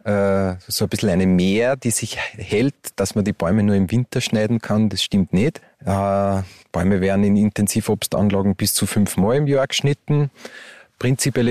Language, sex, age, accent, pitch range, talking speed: German, male, 30-49, Austrian, 95-120 Hz, 170 wpm